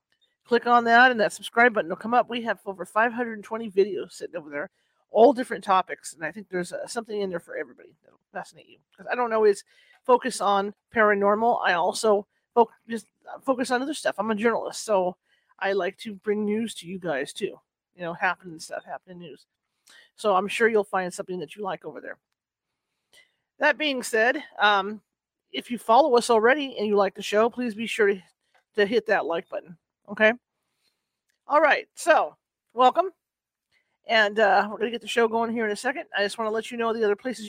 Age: 40-59